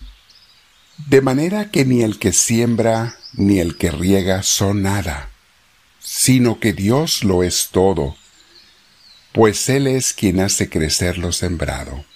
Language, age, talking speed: Spanish, 60-79, 135 wpm